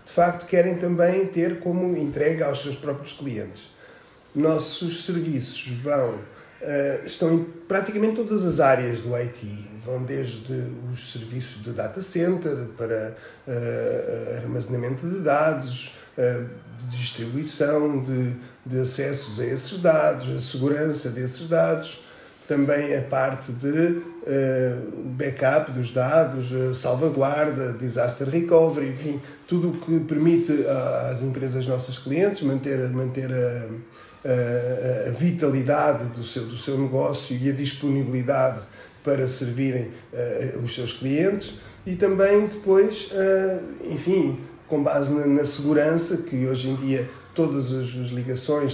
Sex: male